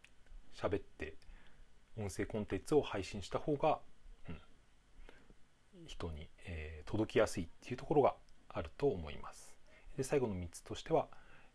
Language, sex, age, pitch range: Japanese, male, 40-59, 85-110 Hz